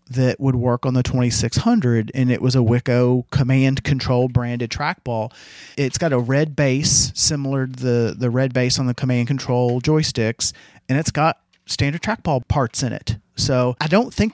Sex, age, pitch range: male, 40-59, 115-140 Hz